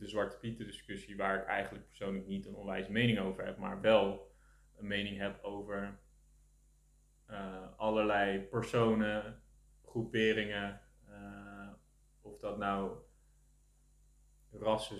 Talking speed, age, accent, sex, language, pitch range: 115 wpm, 20-39, Dutch, male, Dutch, 95-110 Hz